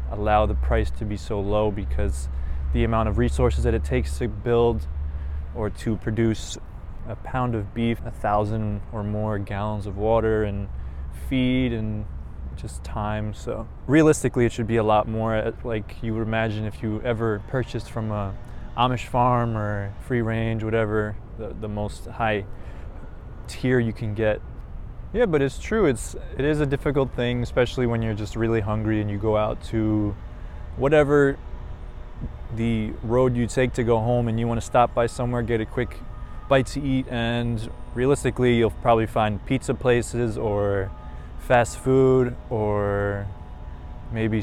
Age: 20-39